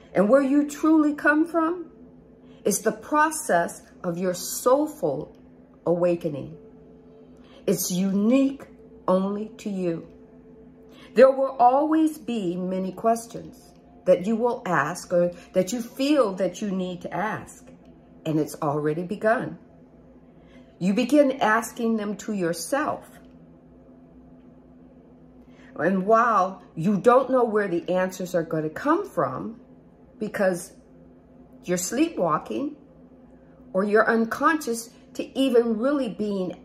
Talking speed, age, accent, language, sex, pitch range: 115 wpm, 50-69, American, English, female, 175-255 Hz